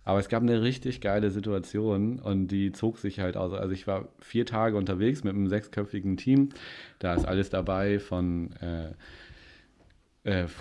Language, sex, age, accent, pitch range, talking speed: German, male, 30-49, German, 95-105 Hz, 170 wpm